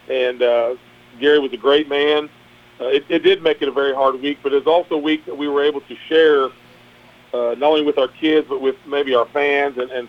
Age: 40-59